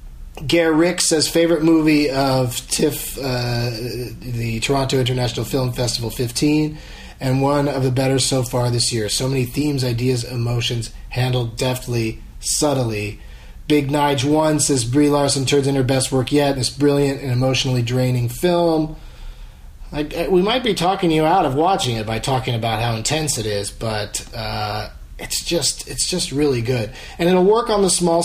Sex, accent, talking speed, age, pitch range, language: male, American, 170 wpm, 30-49, 105-140 Hz, English